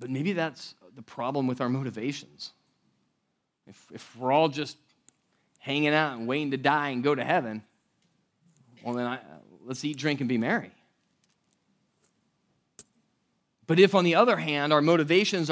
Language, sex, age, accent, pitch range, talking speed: English, male, 30-49, American, 145-205 Hz, 155 wpm